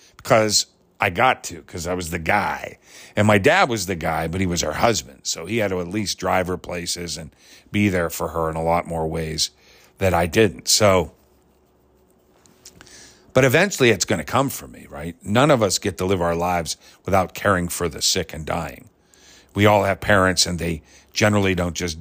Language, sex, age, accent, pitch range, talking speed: English, male, 50-69, American, 85-105 Hz, 205 wpm